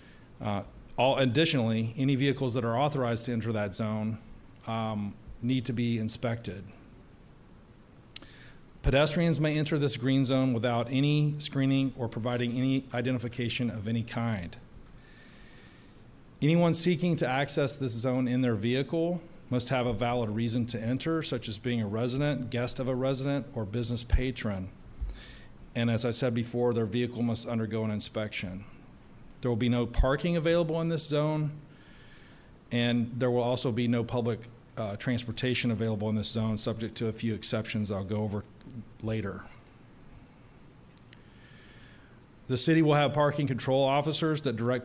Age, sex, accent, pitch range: 40-59, male, American, 115-135 Hz